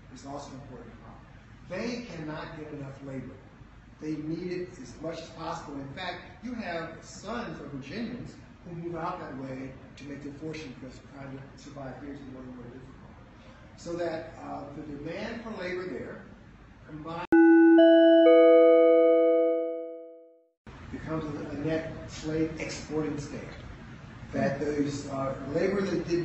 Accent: American